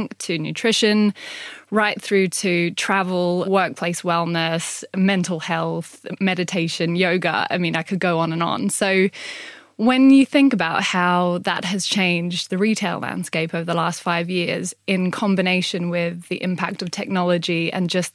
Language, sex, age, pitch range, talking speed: English, female, 20-39, 175-200 Hz, 150 wpm